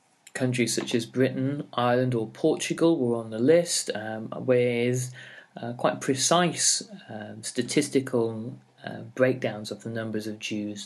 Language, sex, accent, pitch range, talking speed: English, male, British, 100-130 Hz, 140 wpm